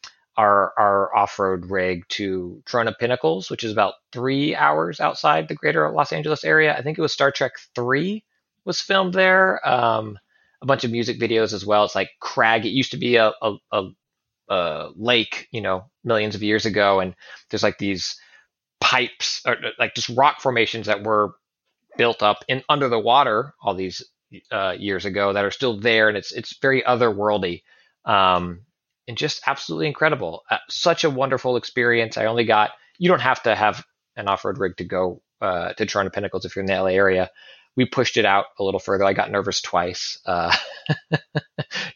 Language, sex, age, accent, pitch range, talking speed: English, male, 30-49, American, 100-135 Hz, 185 wpm